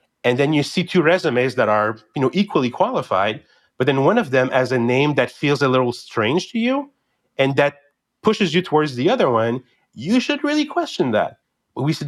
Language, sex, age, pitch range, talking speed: English, male, 30-49, 130-175 Hz, 210 wpm